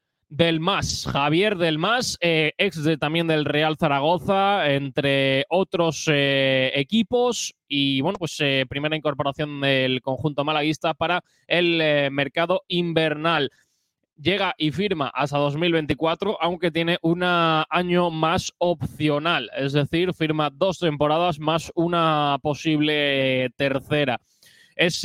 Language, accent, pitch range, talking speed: Spanish, Spanish, 145-175 Hz, 115 wpm